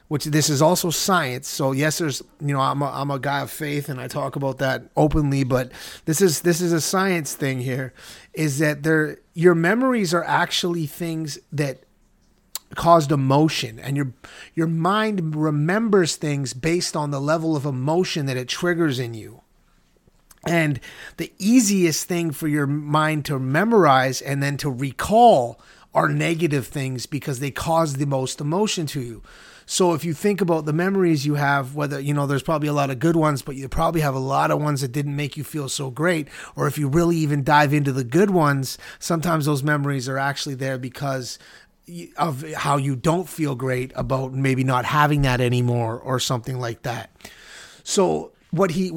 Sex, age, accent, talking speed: male, 30-49, American, 185 wpm